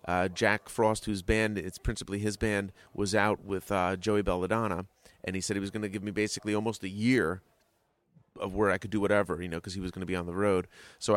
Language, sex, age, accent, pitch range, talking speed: English, male, 30-49, American, 95-115 Hz, 245 wpm